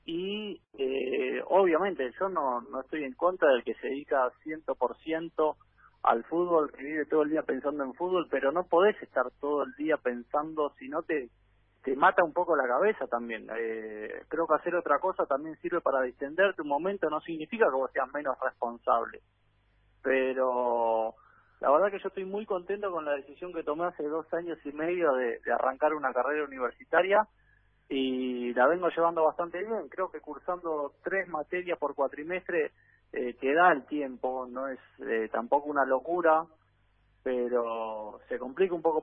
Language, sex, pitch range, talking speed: Spanish, male, 130-175 Hz, 175 wpm